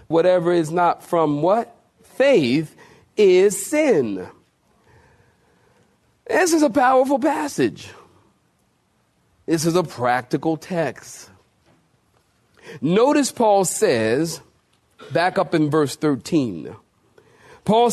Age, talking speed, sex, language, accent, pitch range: 40-59, 90 wpm, male, English, American, 140-210 Hz